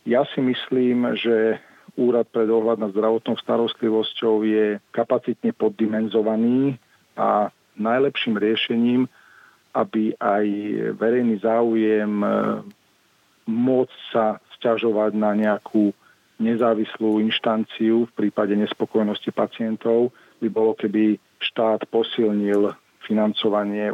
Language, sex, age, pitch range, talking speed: Slovak, male, 40-59, 110-120 Hz, 95 wpm